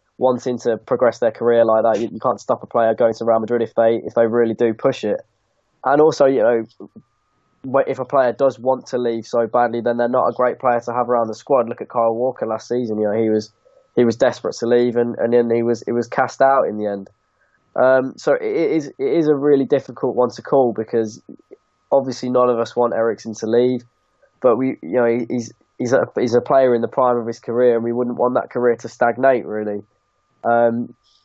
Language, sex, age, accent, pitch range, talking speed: English, male, 10-29, British, 115-130 Hz, 235 wpm